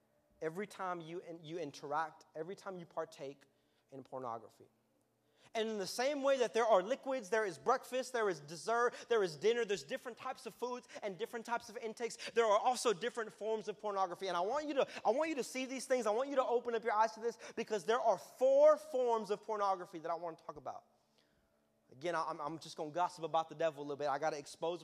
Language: English